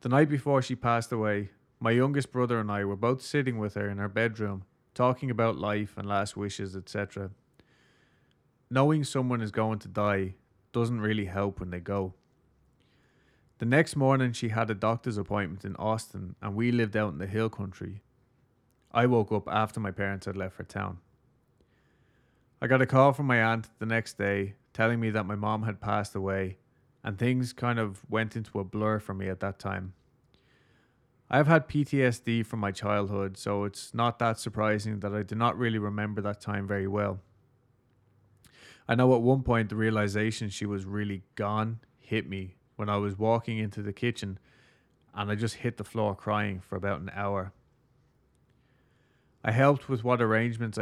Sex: male